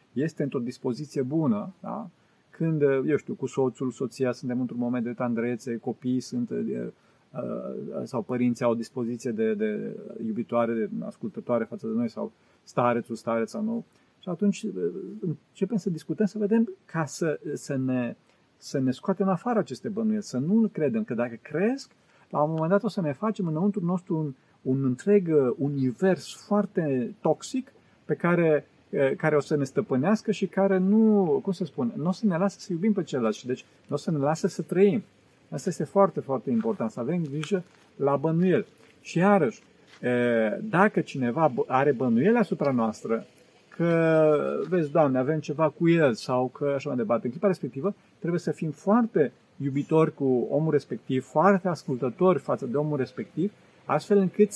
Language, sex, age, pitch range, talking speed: Romanian, male, 40-59, 135-200 Hz, 170 wpm